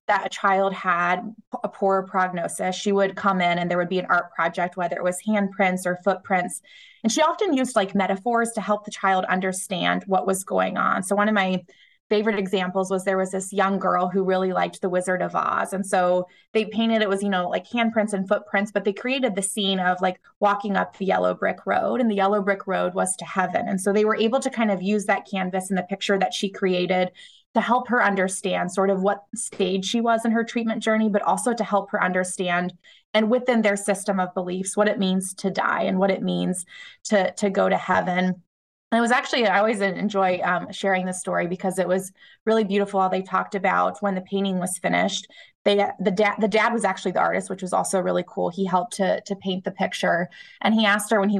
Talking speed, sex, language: 230 wpm, female, English